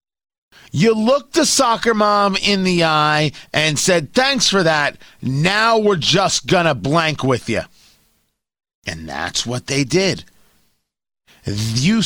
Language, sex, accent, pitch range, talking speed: English, male, American, 155-215 Hz, 135 wpm